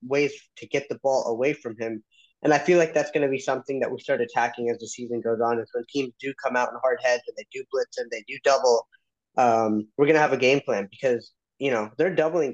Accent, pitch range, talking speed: American, 120-145 Hz, 270 wpm